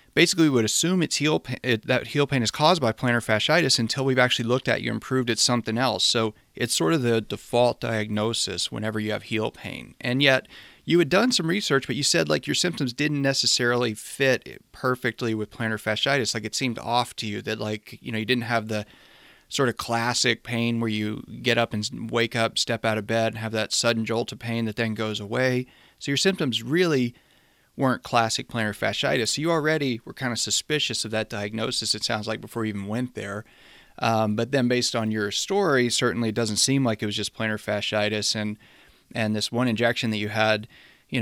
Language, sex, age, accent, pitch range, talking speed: English, male, 30-49, American, 110-125 Hz, 220 wpm